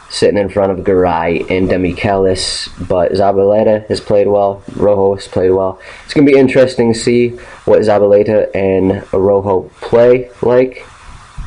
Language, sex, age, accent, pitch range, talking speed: English, male, 20-39, American, 95-115 Hz, 145 wpm